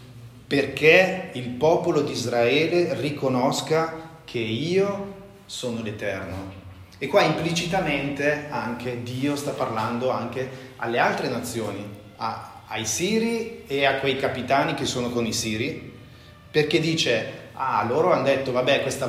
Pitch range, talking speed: 110-145 Hz, 125 wpm